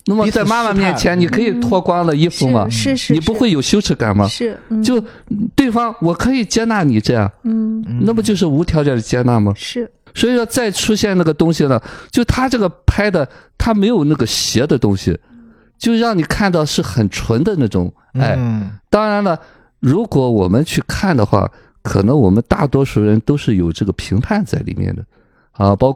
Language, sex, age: Chinese, male, 50-69